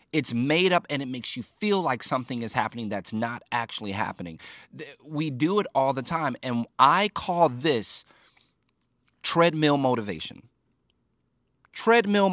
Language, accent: English, American